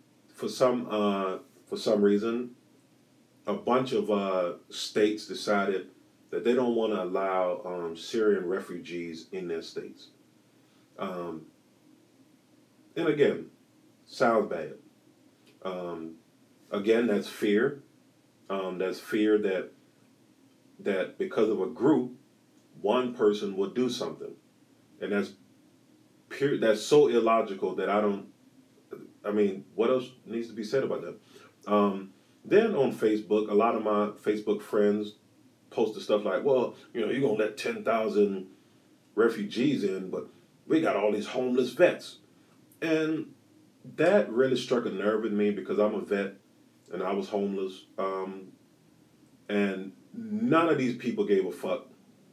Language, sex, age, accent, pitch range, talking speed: English, male, 40-59, American, 95-115 Hz, 140 wpm